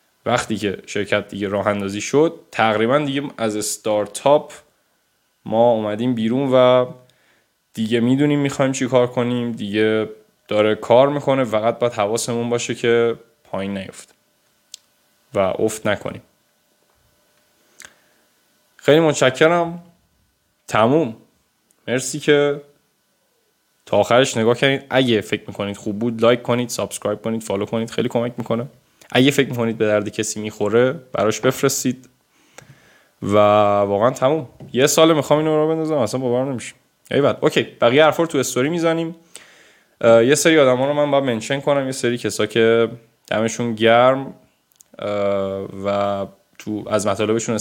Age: 10-29